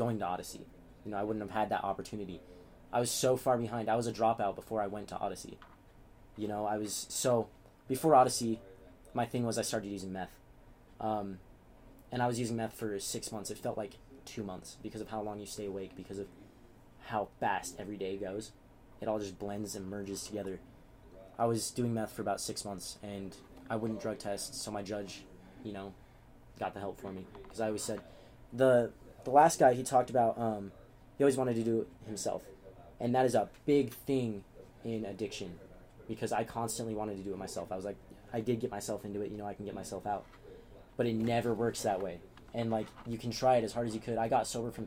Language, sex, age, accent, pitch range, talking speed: English, male, 20-39, American, 100-115 Hz, 225 wpm